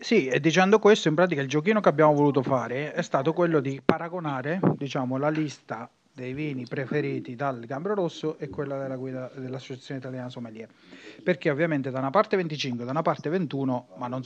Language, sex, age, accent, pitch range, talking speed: Italian, male, 30-49, native, 135-170 Hz, 195 wpm